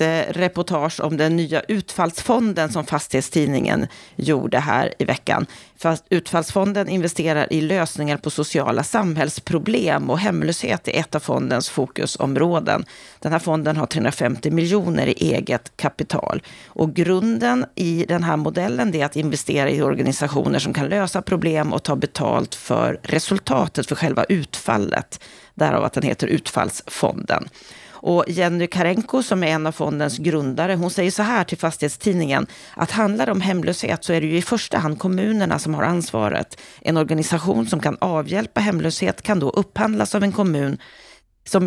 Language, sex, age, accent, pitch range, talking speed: Swedish, female, 40-59, native, 155-190 Hz, 150 wpm